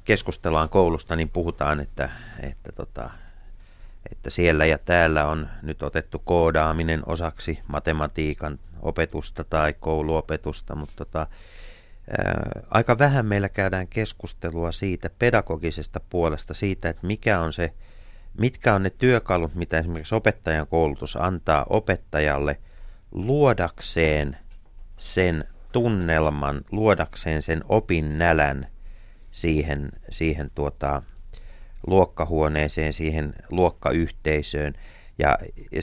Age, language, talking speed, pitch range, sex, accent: 30-49, Finnish, 90 wpm, 80-95 Hz, male, native